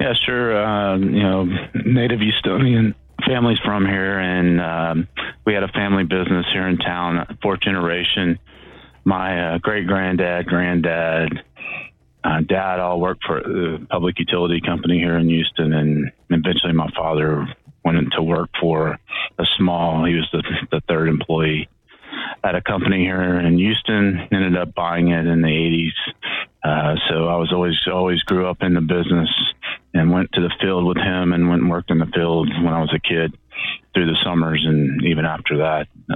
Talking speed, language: 175 wpm, English